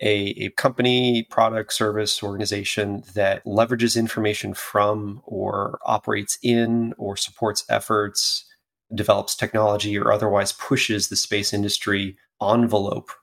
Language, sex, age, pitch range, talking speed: English, male, 30-49, 100-110 Hz, 115 wpm